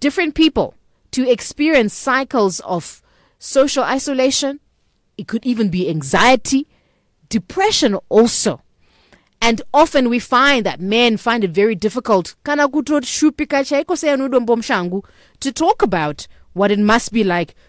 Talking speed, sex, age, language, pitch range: 110 wpm, female, 30-49, English, 190-265 Hz